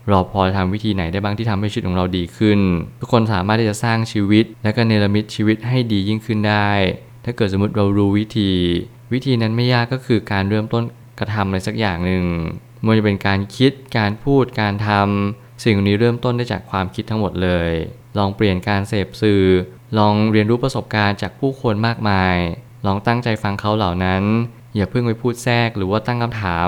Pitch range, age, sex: 100-115 Hz, 20-39, male